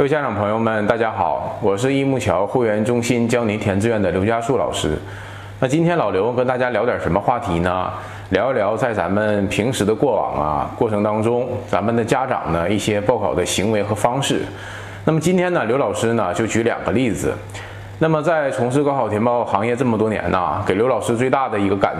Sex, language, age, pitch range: male, Chinese, 20-39, 100-130 Hz